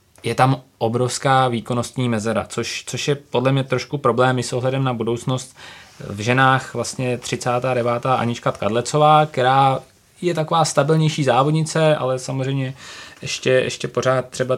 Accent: native